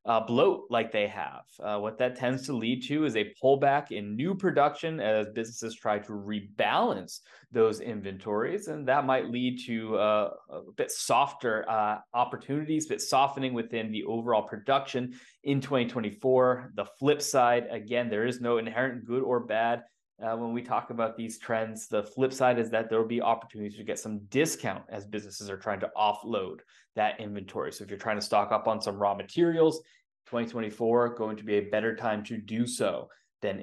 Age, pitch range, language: 20-39, 105-135 Hz, English